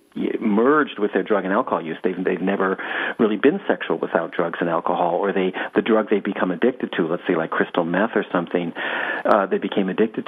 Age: 40-59